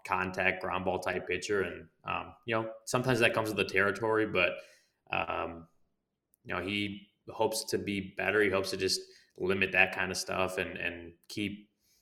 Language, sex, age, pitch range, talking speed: English, male, 20-39, 95-105 Hz, 180 wpm